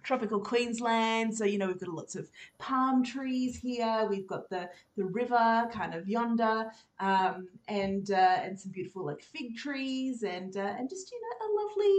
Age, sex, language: 30-49, female, English